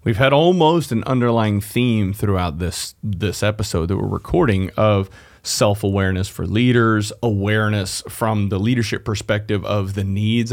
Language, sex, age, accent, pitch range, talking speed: English, male, 30-49, American, 105-130 Hz, 140 wpm